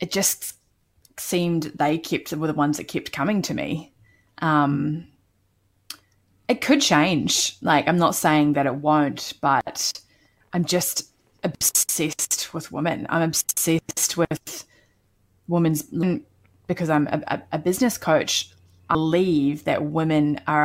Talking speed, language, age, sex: 130 wpm, English, 20-39, female